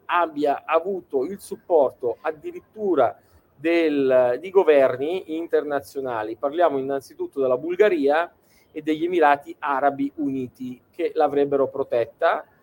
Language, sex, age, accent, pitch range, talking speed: Italian, male, 40-59, native, 135-195 Hz, 100 wpm